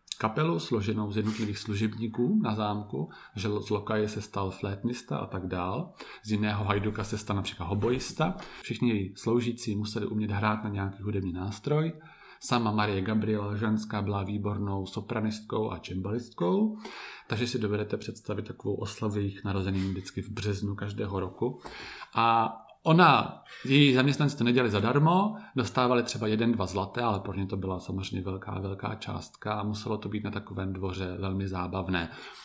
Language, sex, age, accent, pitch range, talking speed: Czech, male, 30-49, native, 100-120 Hz, 155 wpm